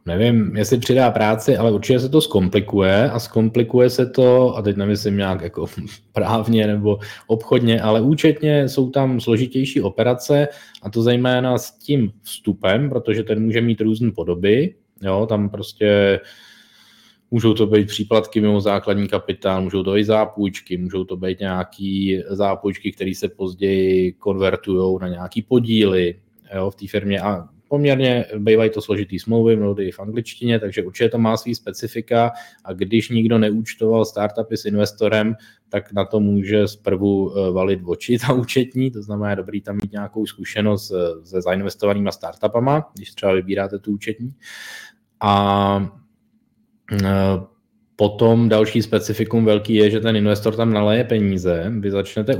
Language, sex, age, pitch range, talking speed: Czech, male, 20-39, 100-115 Hz, 150 wpm